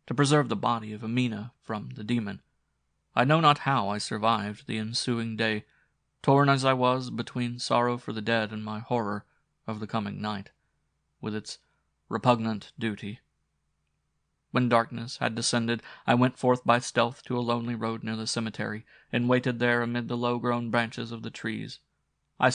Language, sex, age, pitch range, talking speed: English, male, 30-49, 110-125 Hz, 175 wpm